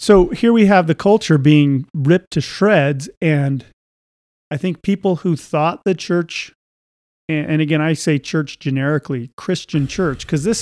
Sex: male